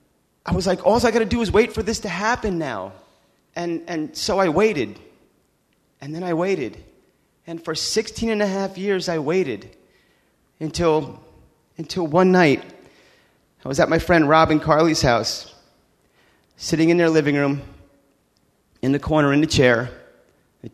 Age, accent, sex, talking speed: 30-49, American, male, 165 wpm